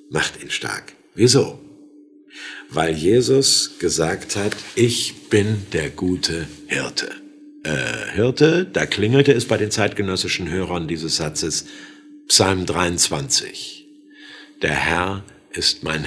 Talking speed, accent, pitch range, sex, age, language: 110 wpm, German, 85-115 Hz, male, 50-69, German